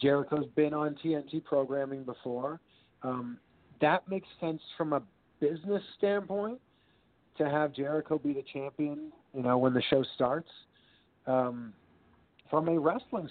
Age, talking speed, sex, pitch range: 40-59, 135 wpm, male, 130-170 Hz